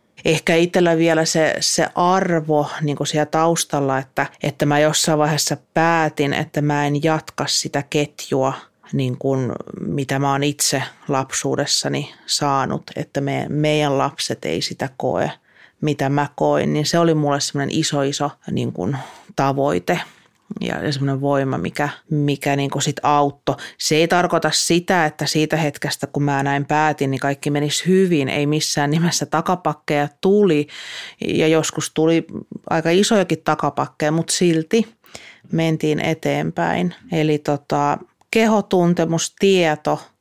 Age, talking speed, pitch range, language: 30-49, 130 wpm, 145-165 Hz, Finnish